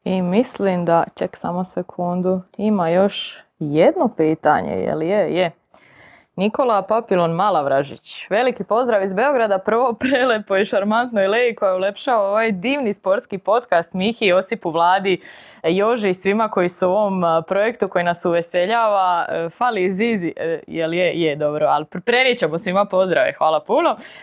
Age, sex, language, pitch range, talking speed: 20-39, female, Croatian, 170-240 Hz, 150 wpm